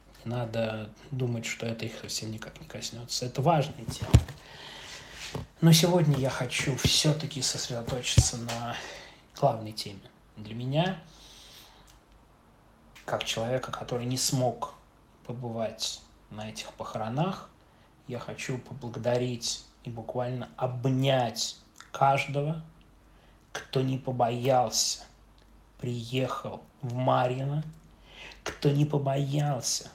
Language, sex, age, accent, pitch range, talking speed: Russian, male, 20-39, native, 115-140 Hz, 95 wpm